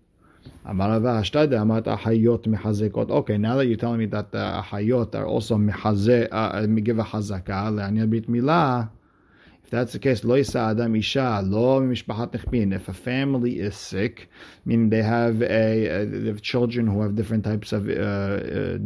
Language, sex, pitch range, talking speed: English, male, 100-120 Hz, 155 wpm